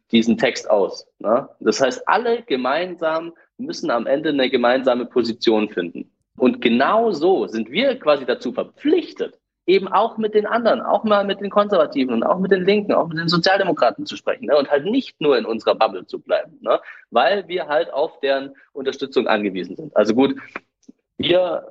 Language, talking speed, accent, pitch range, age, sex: German, 180 wpm, German, 110-180 Hz, 30-49, male